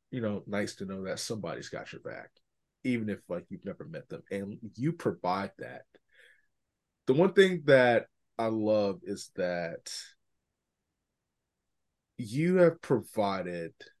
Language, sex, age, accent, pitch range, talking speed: English, male, 30-49, American, 100-145 Hz, 135 wpm